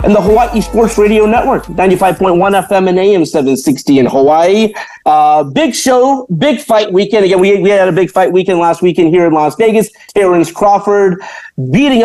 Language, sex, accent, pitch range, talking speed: English, male, American, 150-210 Hz, 180 wpm